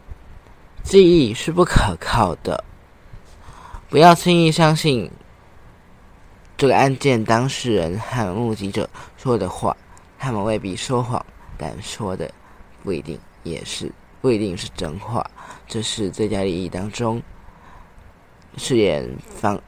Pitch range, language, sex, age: 90-125 Hz, Chinese, male, 20-39